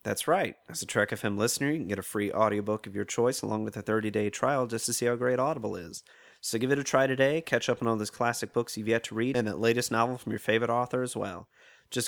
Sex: male